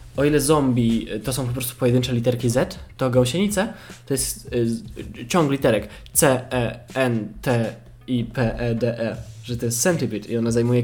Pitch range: 120-150 Hz